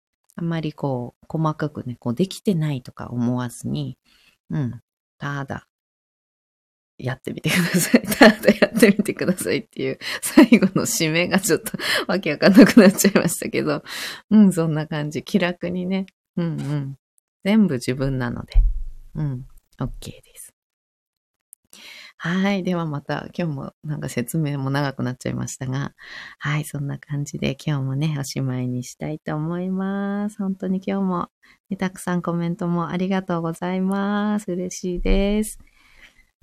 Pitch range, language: 150-215 Hz, Japanese